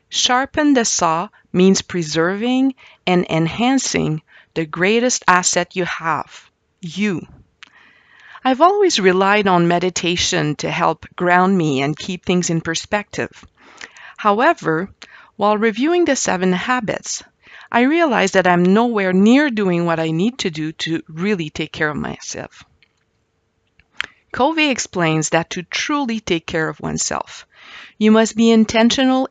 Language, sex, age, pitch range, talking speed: English, female, 50-69, 170-240 Hz, 130 wpm